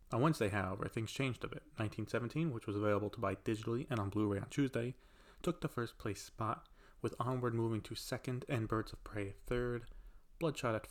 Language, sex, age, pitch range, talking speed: English, male, 30-49, 105-125 Hz, 205 wpm